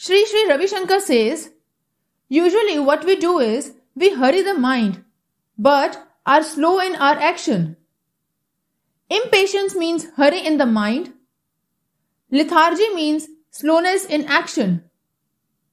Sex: female